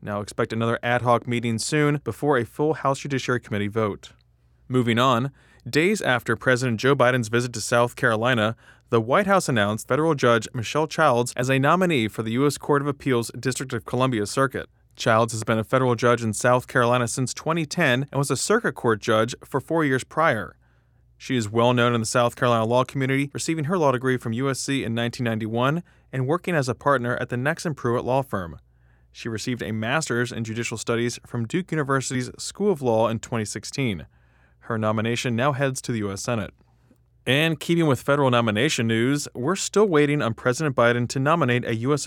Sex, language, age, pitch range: male, English, 20-39, 115-140 Hz